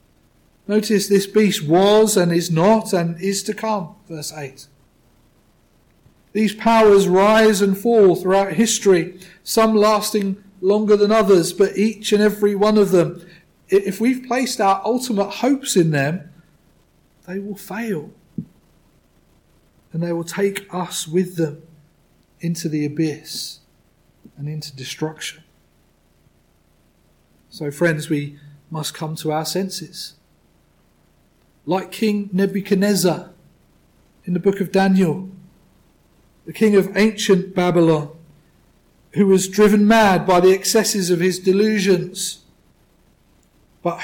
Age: 40-59